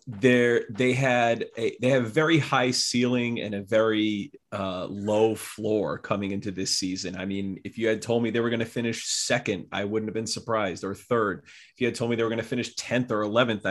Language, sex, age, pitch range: English, male, 30-49, 105-130 Hz